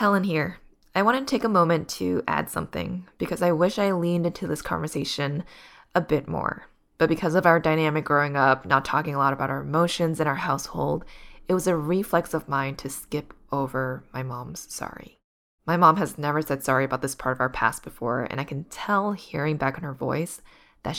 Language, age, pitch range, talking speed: English, 20-39, 140-175 Hz, 210 wpm